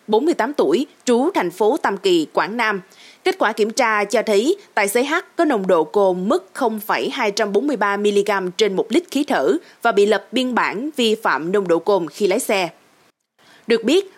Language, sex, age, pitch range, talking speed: Vietnamese, female, 20-39, 200-310 Hz, 185 wpm